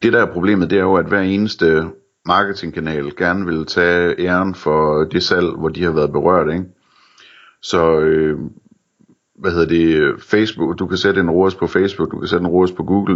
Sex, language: male, Danish